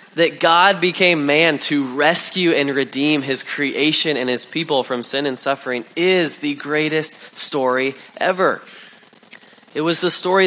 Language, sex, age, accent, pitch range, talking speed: English, male, 20-39, American, 120-155 Hz, 150 wpm